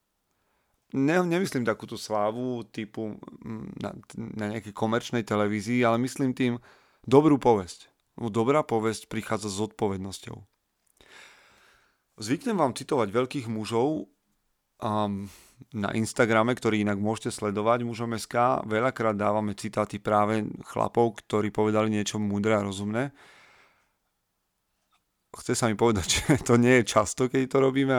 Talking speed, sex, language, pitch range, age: 125 wpm, male, Slovak, 105-120 Hz, 30-49